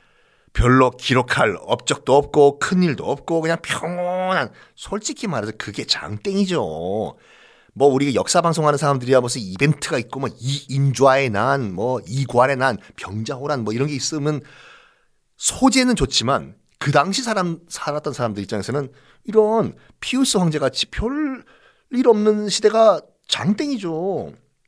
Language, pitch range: Korean, 125-180 Hz